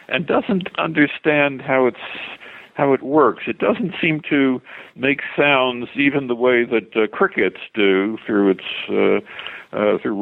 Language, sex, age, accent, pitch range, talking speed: English, male, 60-79, American, 105-140 Hz, 155 wpm